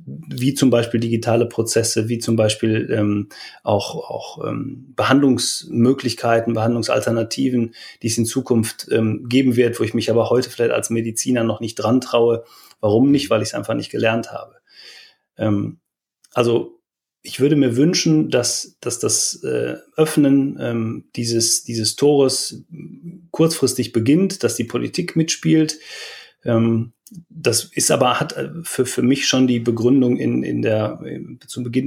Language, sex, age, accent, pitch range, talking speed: German, male, 30-49, German, 115-135 Hz, 150 wpm